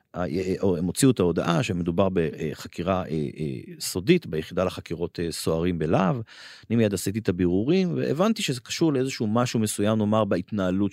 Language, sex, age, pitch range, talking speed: Hebrew, male, 30-49, 90-120 Hz, 135 wpm